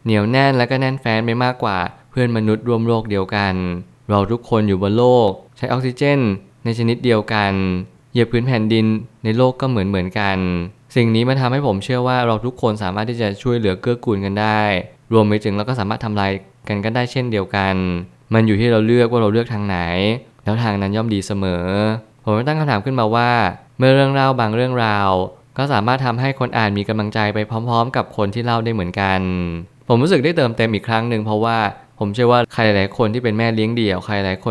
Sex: male